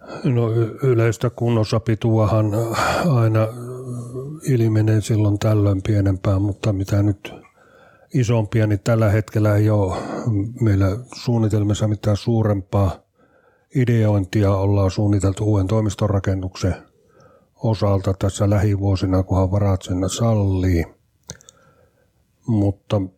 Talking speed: 90 wpm